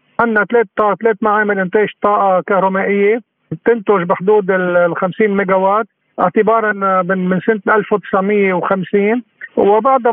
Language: Arabic